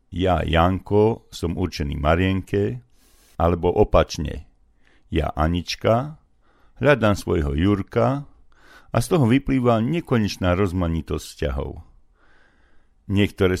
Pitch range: 80-110 Hz